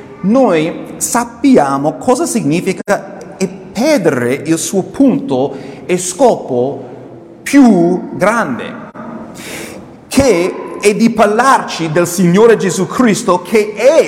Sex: male